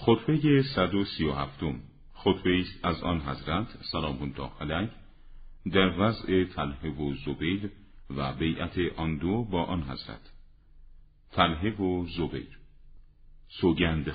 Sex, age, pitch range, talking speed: male, 50-69, 75-95 Hz, 110 wpm